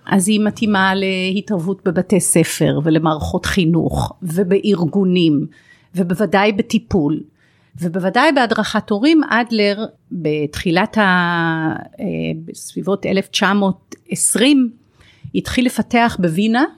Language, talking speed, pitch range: Hebrew, 80 wpm, 180-230 Hz